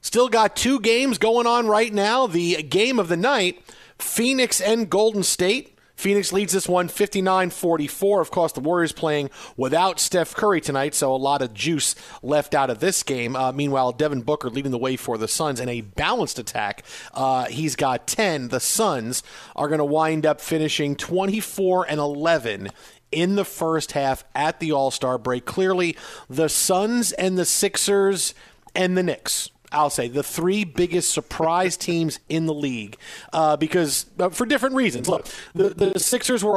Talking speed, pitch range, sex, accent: 175 wpm, 150-195 Hz, male, American